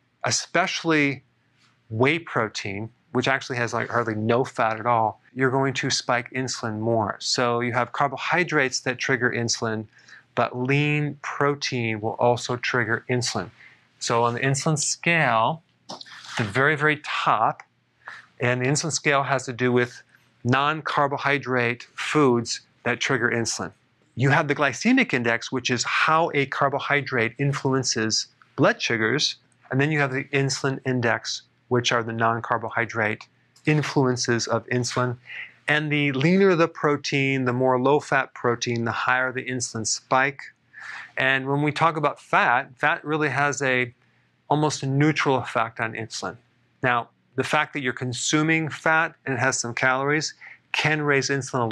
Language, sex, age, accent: English, male, 40-59, American